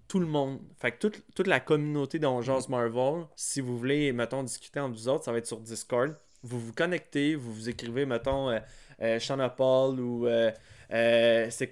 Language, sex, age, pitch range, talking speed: French, male, 20-39, 120-140 Hz, 195 wpm